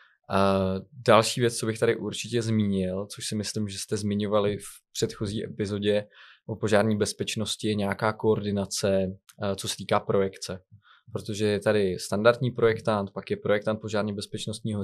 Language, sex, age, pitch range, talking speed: Slovak, male, 20-39, 105-115 Hz, 140 wpm